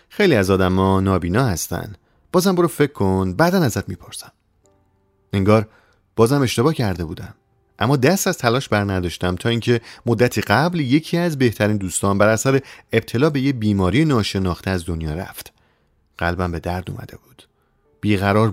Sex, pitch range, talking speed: male, 95-120 Hz, 155 wpm